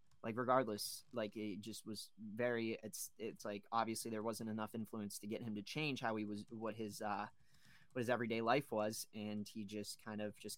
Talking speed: 225 wpm